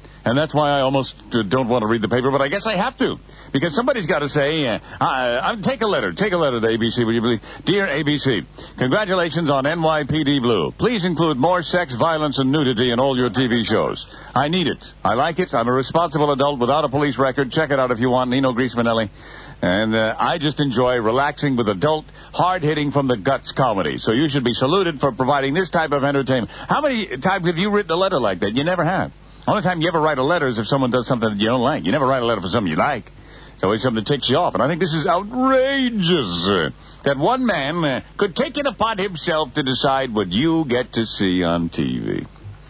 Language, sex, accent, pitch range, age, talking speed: English, male, American, 115-165 Hz, 60-79, 240 wpm